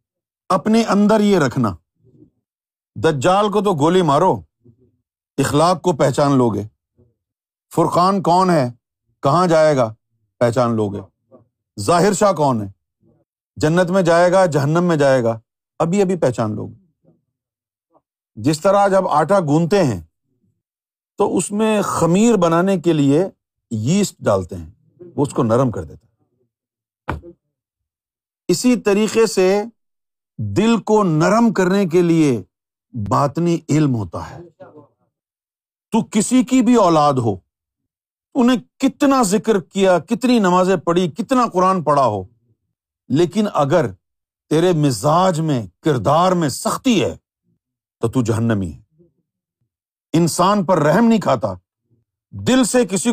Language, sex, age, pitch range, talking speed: Urdu, male, 40-59, 115-190 Hz, 130 wpm